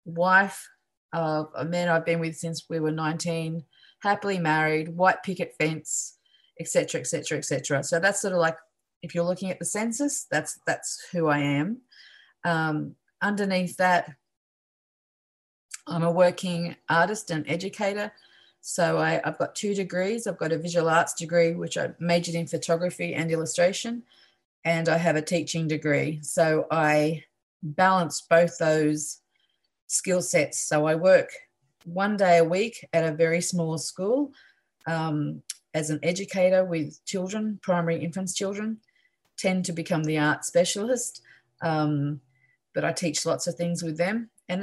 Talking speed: 150 wpm